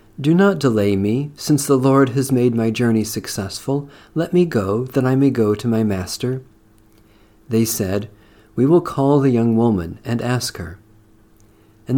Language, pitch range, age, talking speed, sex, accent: English, 105-135 Hz, 50-69, 170 wpm, male, American